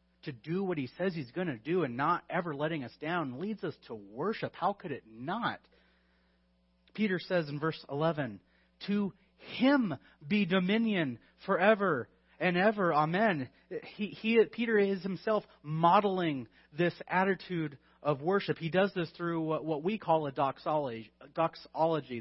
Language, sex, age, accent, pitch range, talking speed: English, male, 30-49, American, 125-170 Hz, 155 wpm